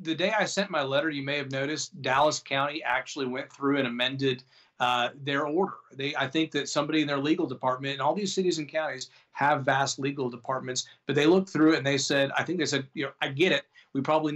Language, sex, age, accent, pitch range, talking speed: English, male, 40-59, American, 135-155 Hz, 240 wpm